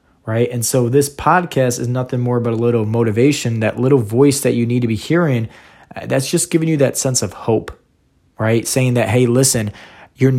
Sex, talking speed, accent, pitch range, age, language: male, 200 wpm, American, 115-145 Hz, 20-39, English